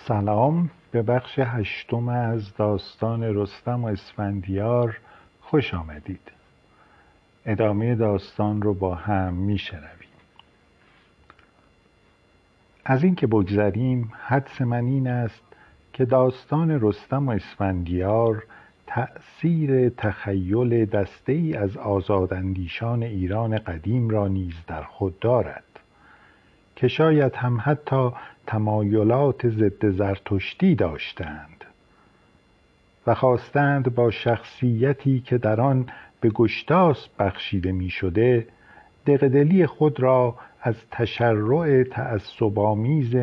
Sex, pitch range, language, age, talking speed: male, 100-125 Hz, Persian, 50-69, 95 wpm